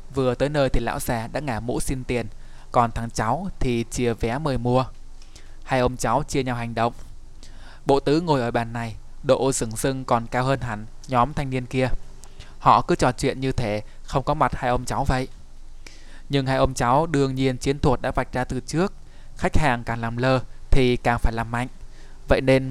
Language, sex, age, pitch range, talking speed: Vietnamese, male, 20-39, 115-140 Hz, 215 wpm